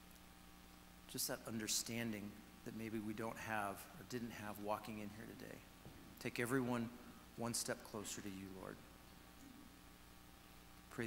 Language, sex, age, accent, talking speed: English, male, 40-59, American, 130 wpm